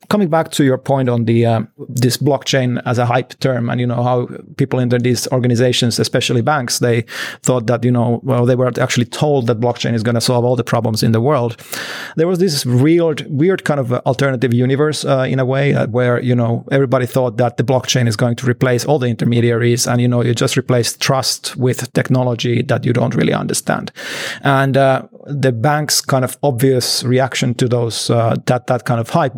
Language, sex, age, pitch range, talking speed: English, male, 30-49, 120-135 Hz, 215 wpm